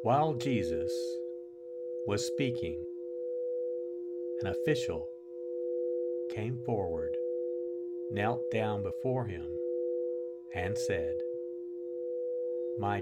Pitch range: 115-165 Hz